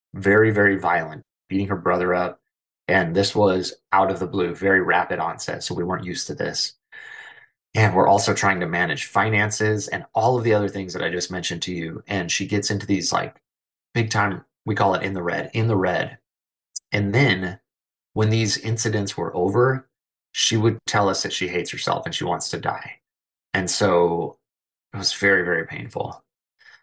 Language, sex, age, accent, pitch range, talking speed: English, male, 30-49, American, 90-105 Hz, 190 wpm